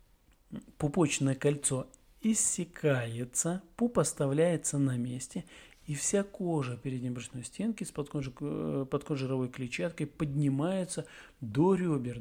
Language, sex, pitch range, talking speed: Russian, male, 135-180 Hz, 105 wpm